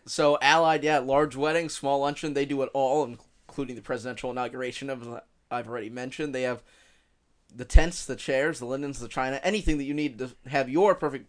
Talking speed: 195 wpm